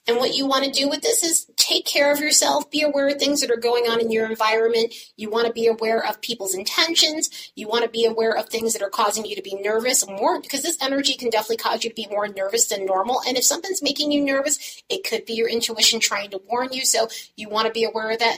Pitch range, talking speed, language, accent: 200-275 Hz, 270 wpm, English, American